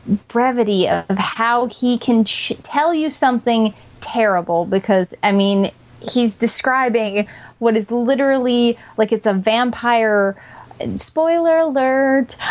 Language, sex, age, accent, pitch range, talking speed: English, female, 20-39, American, 195-240 Hz, 110 wpm